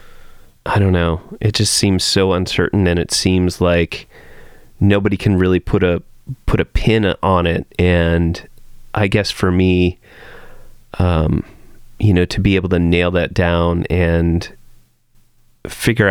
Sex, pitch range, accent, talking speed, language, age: male, 85-110 Hz, American, 145 wpm, English, 30-49